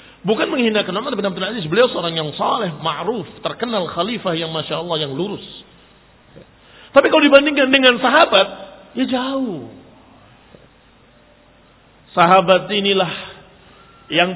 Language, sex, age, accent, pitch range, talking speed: Indonesian, male, 50-69, native, 150-195 Hz, 105 wpm